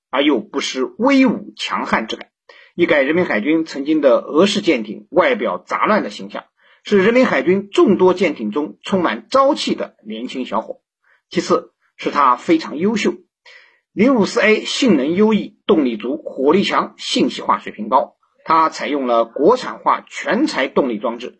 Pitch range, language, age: 165-250 Hz, Chinese, 50-69